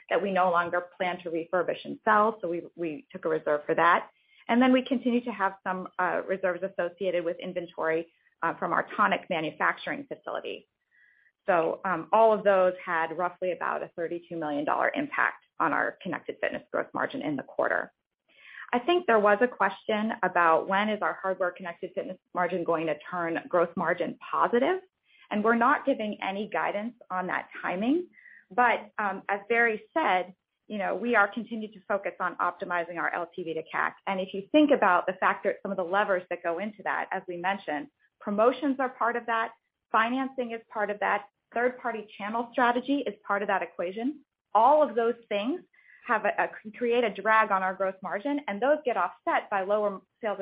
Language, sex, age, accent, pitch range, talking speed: English, female, 30-49, American, 175-230 Hz, 190 wpm